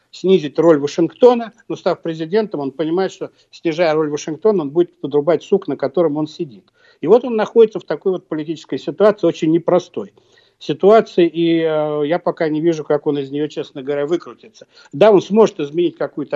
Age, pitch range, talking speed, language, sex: 60-79, 145-180 Hz, 175 wpm, Russian, male